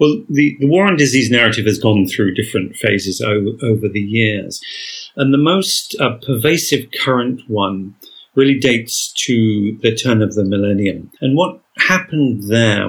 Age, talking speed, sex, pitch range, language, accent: 40-59, 165 wpm, male, 105-130 Hz, English, British